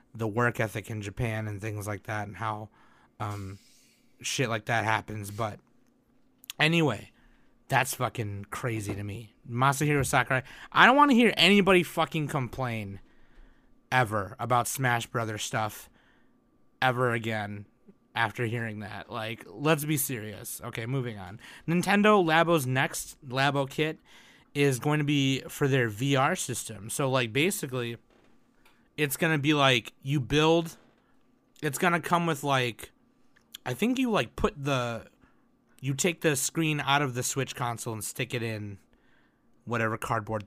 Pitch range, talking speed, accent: 110-145 Hz, 150 wpm, American